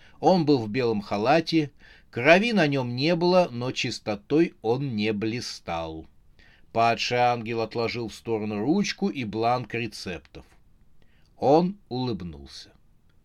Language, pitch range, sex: Russian, 105-140 Hz, male